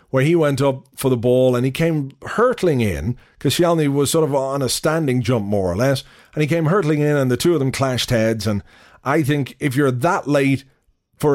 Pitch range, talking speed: 115-145 Hz, 235 wpm